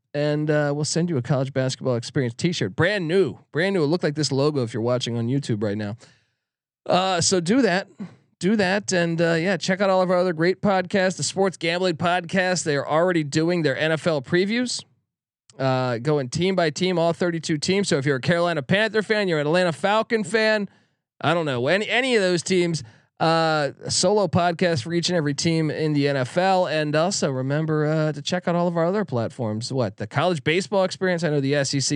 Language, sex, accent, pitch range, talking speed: English, male, American, 140-185 Hz, 215 wpm